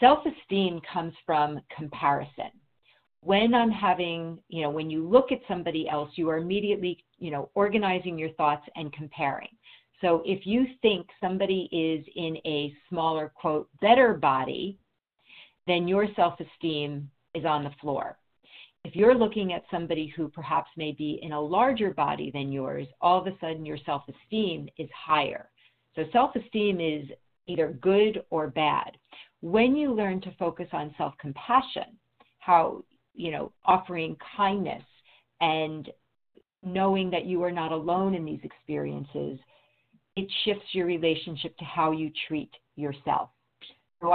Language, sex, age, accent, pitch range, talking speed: English, female, 50-69, American, 150-195 Hz, 145 wpm